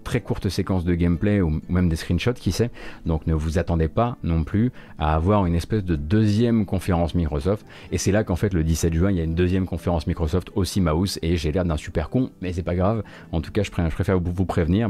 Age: 30-49